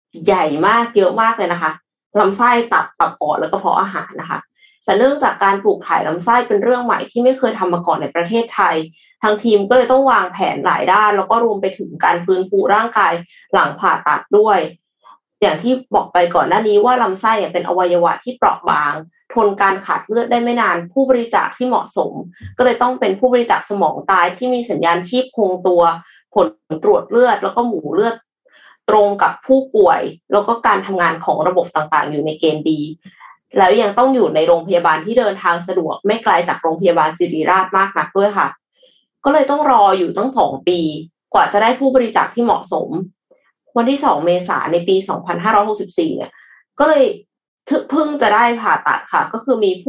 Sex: female